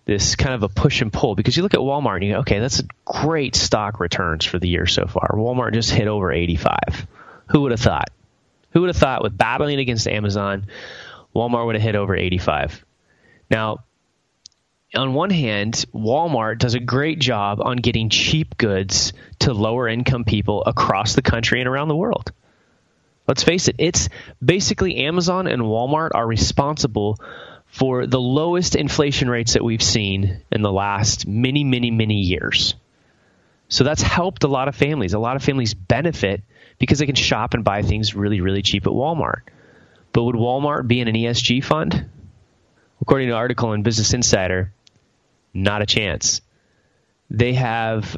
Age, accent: 30-49, American